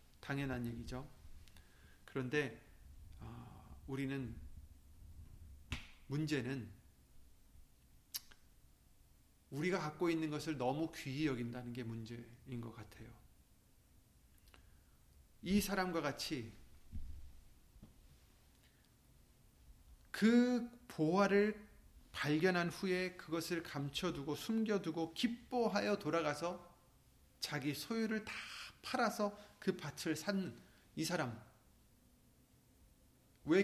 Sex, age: male, 40-59